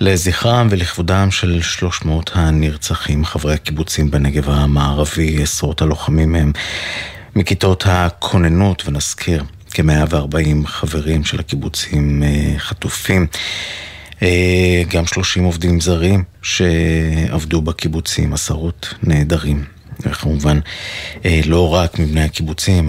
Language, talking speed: Hebrew, 95 wpm